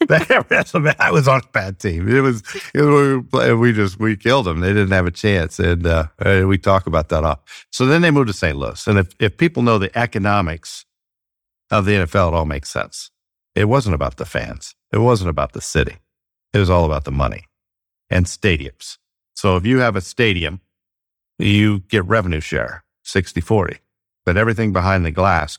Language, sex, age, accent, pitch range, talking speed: English, male, 50-69, American, 85-100 Hz, 190 wpm